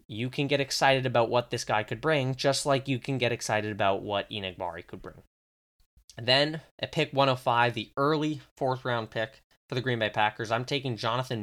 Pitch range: 110-140 Hz